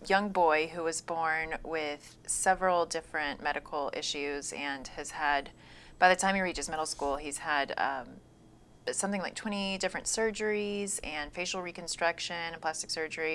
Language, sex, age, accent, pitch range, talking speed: English, female, 30-49, American, 145-175 Hz, 155 wpm